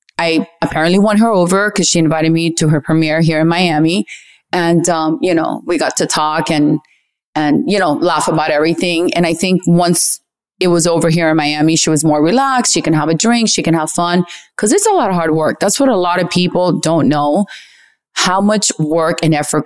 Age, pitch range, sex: 30-49, 165-205 Hz, female